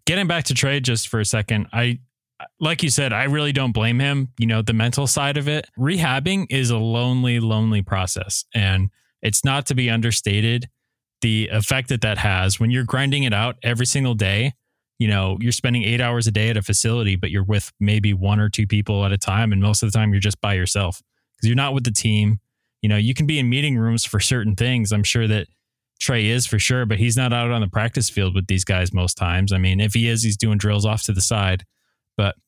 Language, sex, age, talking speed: English, male, 20-39, 240 wpm